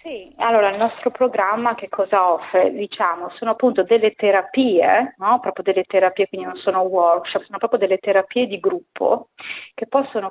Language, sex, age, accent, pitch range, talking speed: Italian, female, 30-49, native, 175-205 Hz, 170 wpm